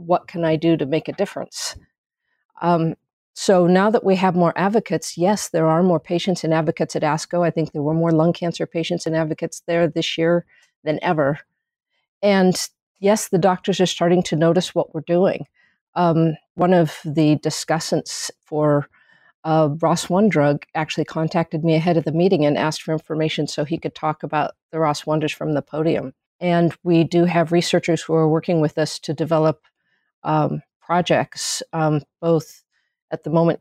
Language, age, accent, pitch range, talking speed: English, 50-69, American, 155-175 Hz, 180 wpm